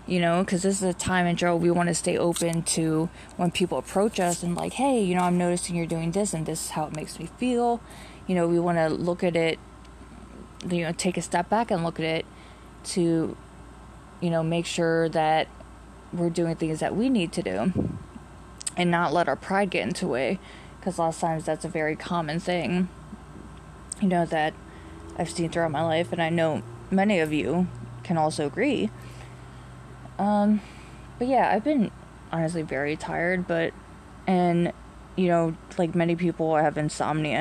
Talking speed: 195 wpm